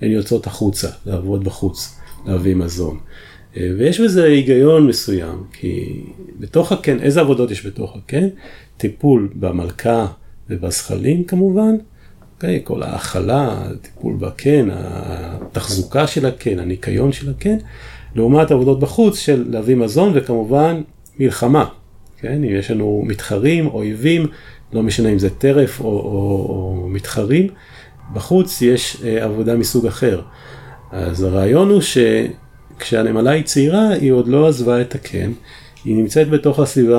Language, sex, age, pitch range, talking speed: Hebrew, male, 40-59, 100-145 Hz, 130 wpm